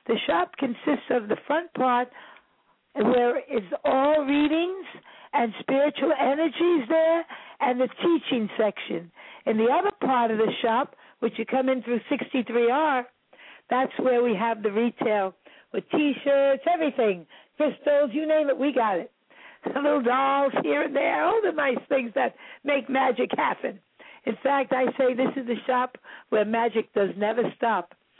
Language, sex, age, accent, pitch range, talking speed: English, female, 60-79, American, 230-275 Hz, 160 wpm